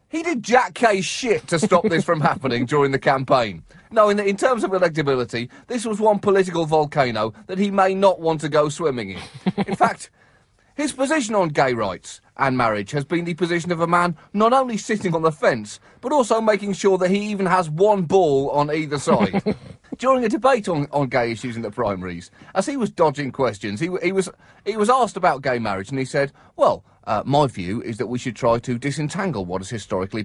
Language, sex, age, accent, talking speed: English, male, 30-49, British, 215 wpm